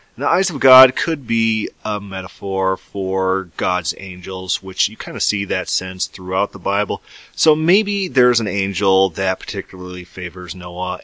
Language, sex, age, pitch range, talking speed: English, male, 30-49, 90-115 Hz, 165 wpm